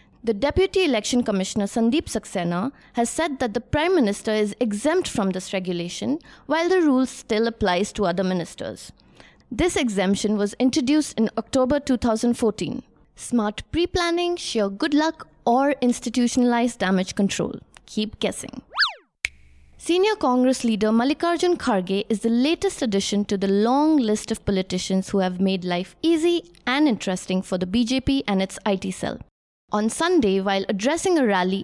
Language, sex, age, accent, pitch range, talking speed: English, female, 20-39, Indian, 205-270 Hz, 150 wpm